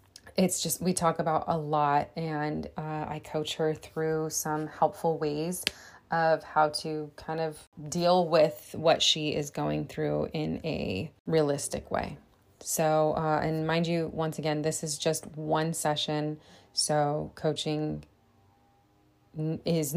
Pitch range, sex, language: 150-165 Hz, female, English